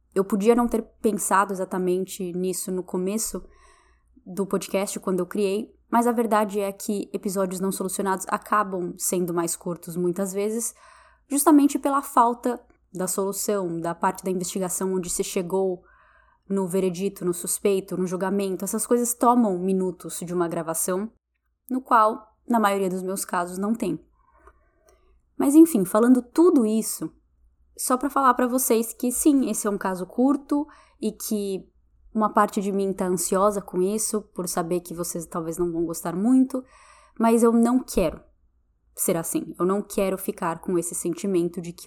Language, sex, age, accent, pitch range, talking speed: Portuguese, female, 10-29, Brazilian, 180-220 Hz, 160 wpm